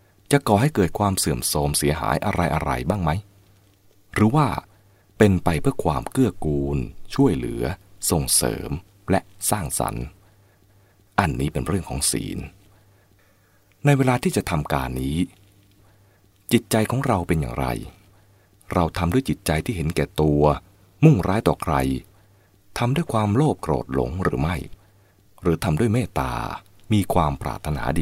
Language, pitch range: English, 80-105 Hz